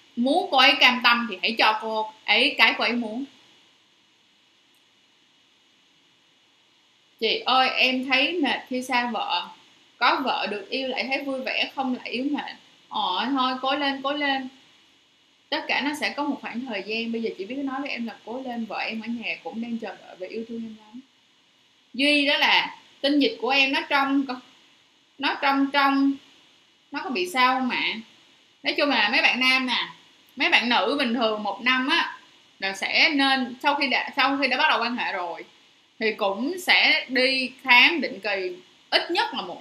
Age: 10-29